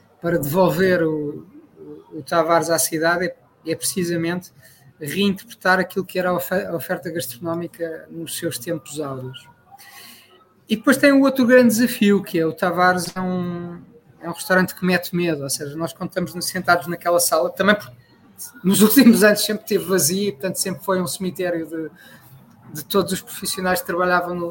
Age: 20-39